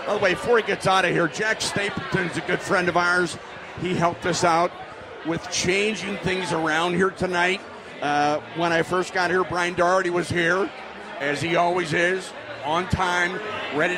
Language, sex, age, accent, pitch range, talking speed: English, male, 50-69, American, 165-195 Hz, 195 wpm